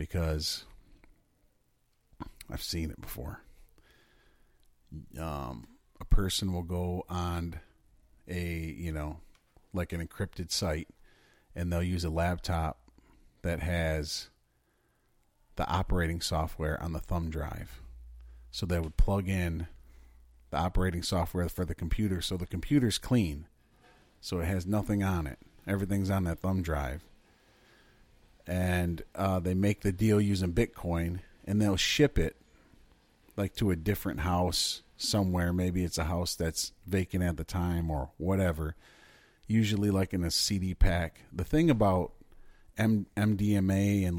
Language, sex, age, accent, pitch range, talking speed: English, male, 40-59, American, 80-95 Hz, 135 wpm